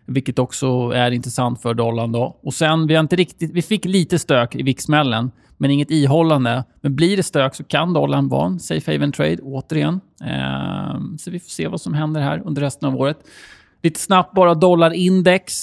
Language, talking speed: Swedish, 200 wpm